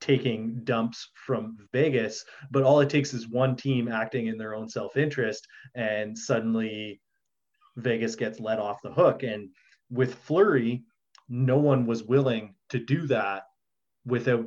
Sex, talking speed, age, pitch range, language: male, 145 wpm, 20-39, 110-130 Hz, English